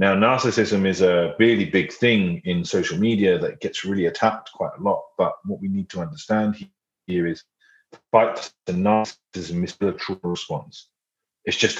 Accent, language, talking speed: British, English, 180 wpm